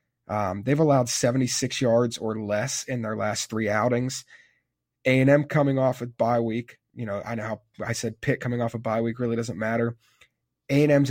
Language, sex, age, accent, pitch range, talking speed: English, male, 30-49, American, 115-130 Hz, 200 wpm